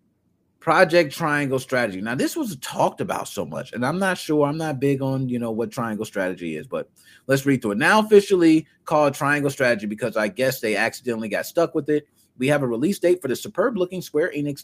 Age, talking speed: 30-49, 220 wpm